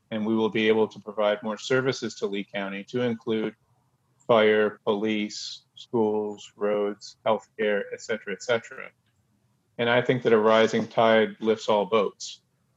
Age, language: 40-59, English